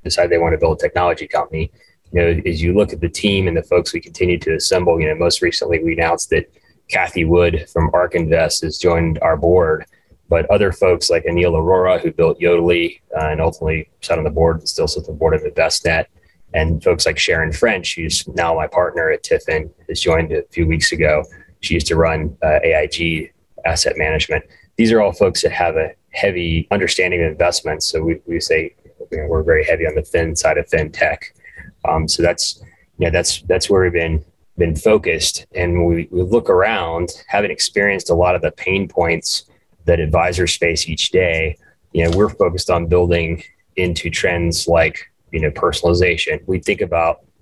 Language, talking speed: English, 200 wpm